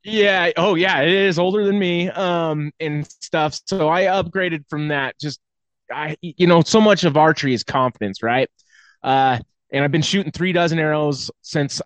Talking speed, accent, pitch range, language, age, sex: 180 wpm, American, 130-155 Hz, English, 20-39, male